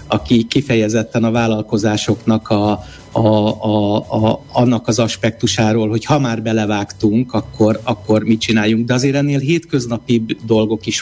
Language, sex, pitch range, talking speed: Hungarian, male, 110-130 Hz, 135 wpm